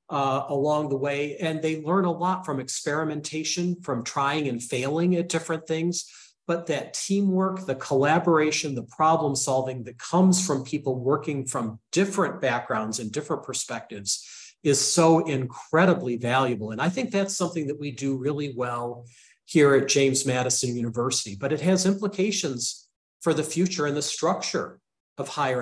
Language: English